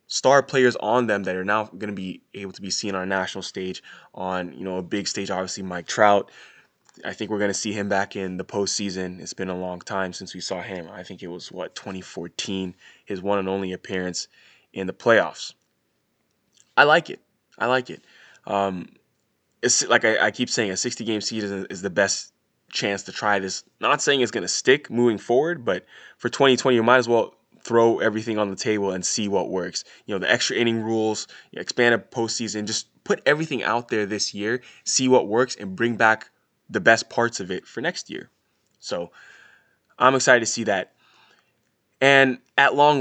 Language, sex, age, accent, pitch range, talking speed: English, male, 20-39, American, 95-115 Hz, 205 wpm